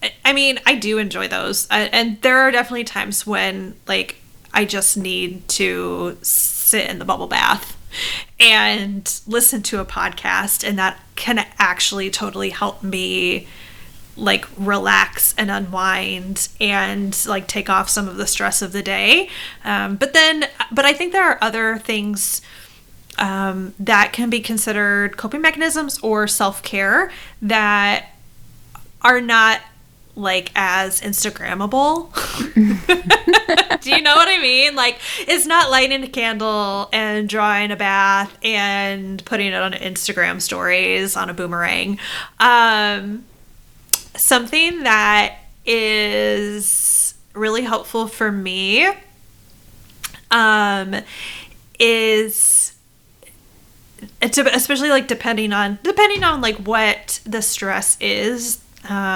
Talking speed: 125 wpm